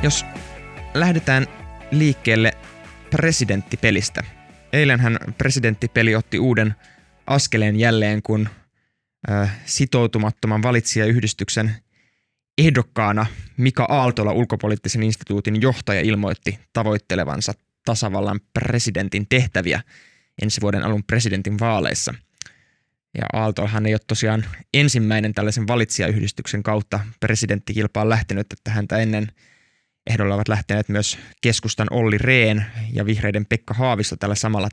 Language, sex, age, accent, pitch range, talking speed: Finnish, male, 20-39, native, 100-115 Hz, 100 wpm